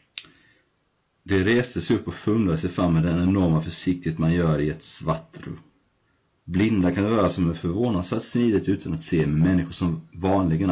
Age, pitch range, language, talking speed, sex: 30-49, 80-95 Hz, Swedish, 170 wpm, male